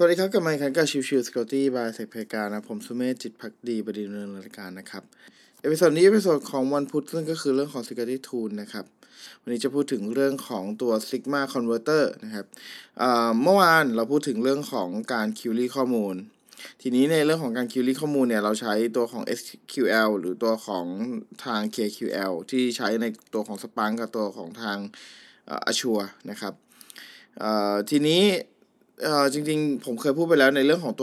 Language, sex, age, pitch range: Thai, male, 20-39, 110-140 Hz